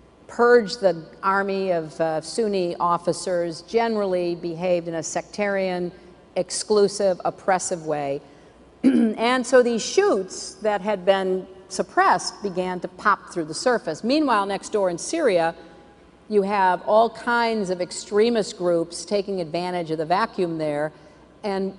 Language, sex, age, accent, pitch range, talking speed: English, female, 50-69, American, 170-210 Hz, 130 wpm